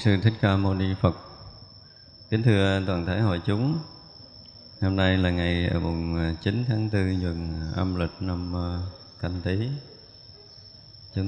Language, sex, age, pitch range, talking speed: Vietnamese, male, 20-39, 95-125 Hz, 145 wpm